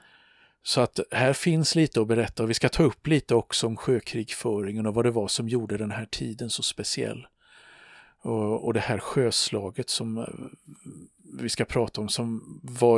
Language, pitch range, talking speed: Swedish, 110-130 Hz, 180 wpm